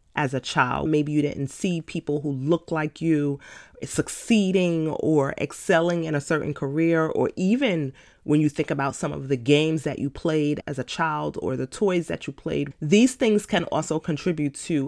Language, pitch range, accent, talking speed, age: English, 140-165 Hz, American, 190 wpm, 30-49